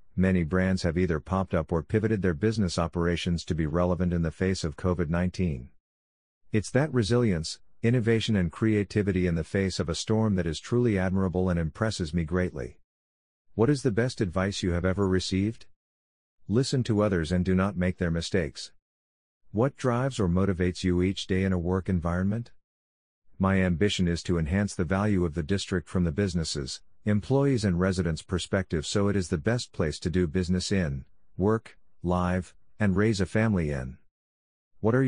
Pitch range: 85-105 Hz